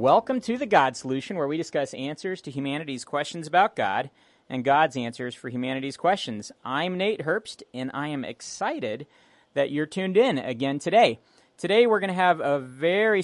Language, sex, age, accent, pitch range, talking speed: English, male, 40-59, American, 130-180 Hz, 180 wpm